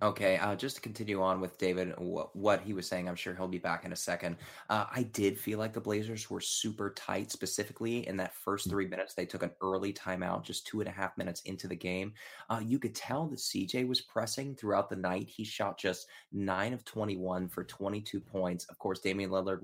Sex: male